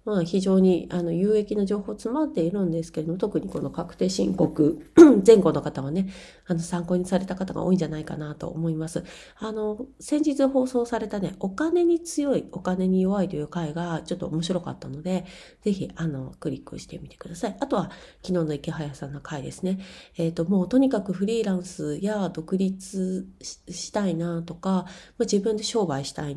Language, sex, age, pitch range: Japanese, female, 30-49, 165-215 Hz